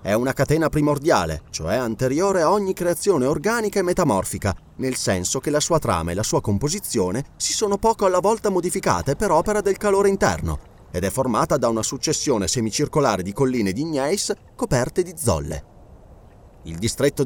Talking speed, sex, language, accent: 170 wpm, male, Italian, native